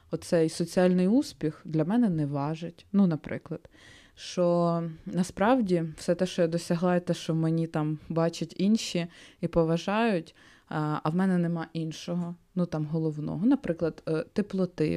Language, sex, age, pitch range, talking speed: Ukrainian, female, 20-39, 160-190 Hz, 140 wpm